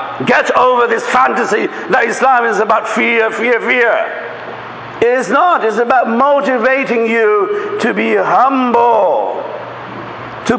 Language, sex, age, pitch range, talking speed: English, male, 60-79, 195-280 Hz, 125 wpm